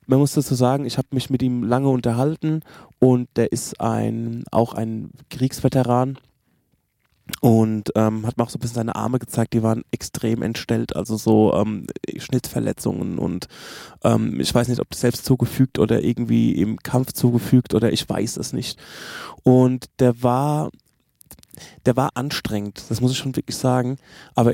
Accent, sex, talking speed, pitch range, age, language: German, male, 165 wpm, 115-125 Hz, 20-39, German